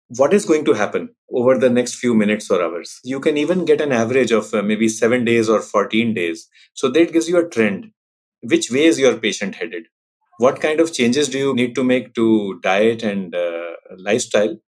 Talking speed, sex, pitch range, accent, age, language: 210 wpm, male, 115-170 Hz, Indian, 30-49, English